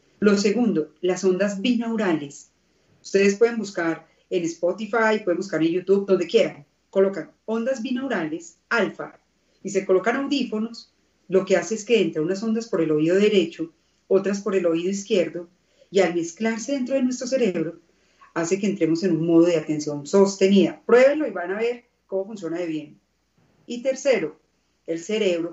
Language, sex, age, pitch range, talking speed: Spanish, female, 40-59, 170-230 Hz, 165 wpm